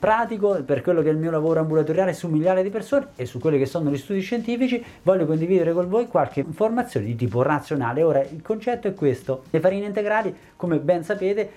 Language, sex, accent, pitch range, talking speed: Italian, male, native, 140-200 Hz, 215 wpm